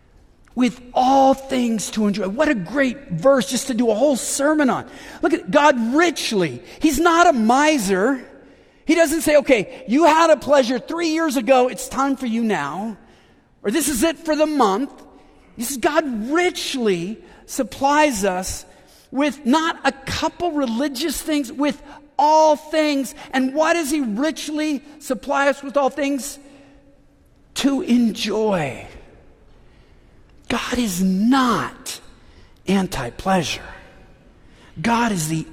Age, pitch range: 50-69, 215-285 Hz